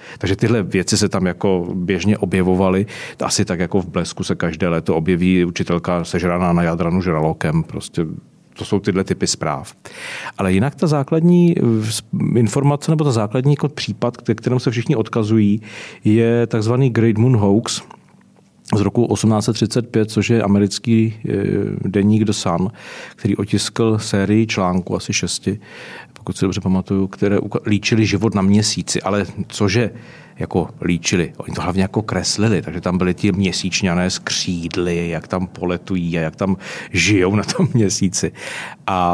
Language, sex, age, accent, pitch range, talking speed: Czech, male, 40-59, native, 90-110 Hz, 145 wpm